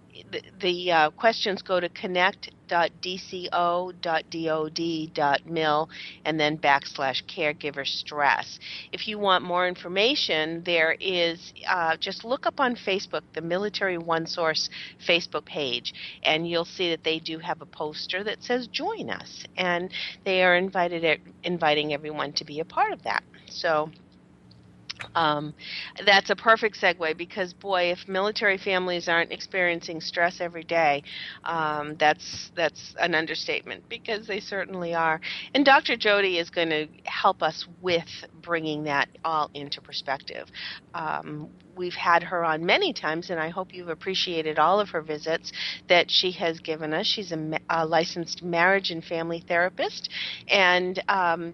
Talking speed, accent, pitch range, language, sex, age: 150 wpm, American, 160-185 Hz, English, female, 50-69